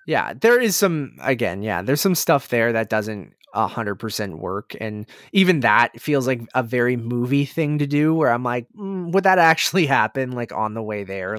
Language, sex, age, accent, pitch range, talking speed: English, male, 20-39, American, 100-140 Hz, 200 wpm